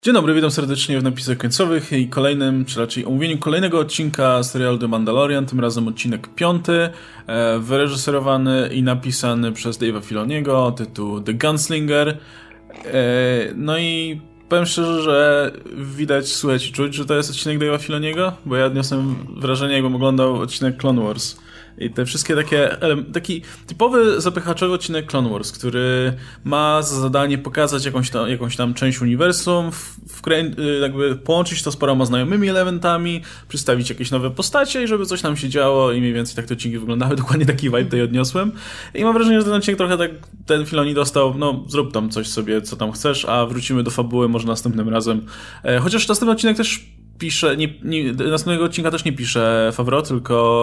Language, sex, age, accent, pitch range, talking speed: Polish, male, 20-39, native, 120-155 Hz, 170 wpm